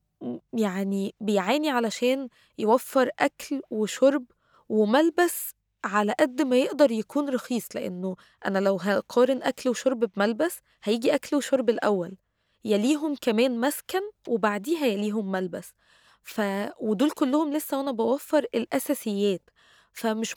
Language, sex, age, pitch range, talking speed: Arabic, female, 20-39, 215-275 Hz, 110 wpm